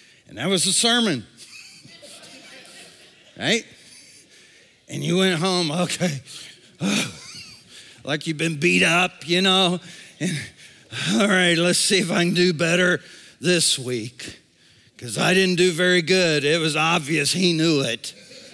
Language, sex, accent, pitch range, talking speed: English, male, American, 165-265 Hz, 140 wpm